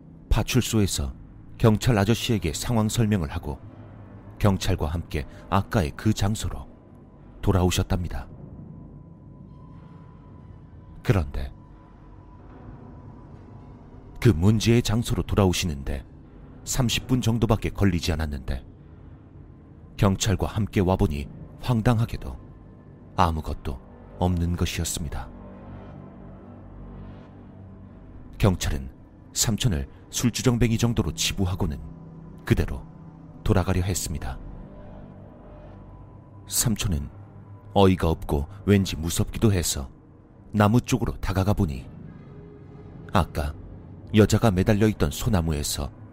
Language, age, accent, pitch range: Korean, 40-59, native, 85-110 Hz